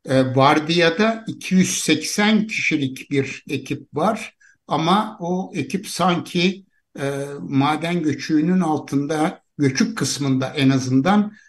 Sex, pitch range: male, 140-185 Hz